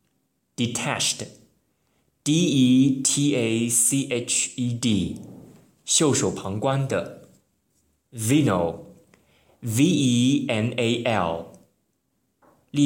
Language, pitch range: Chinese, 105-135 Hz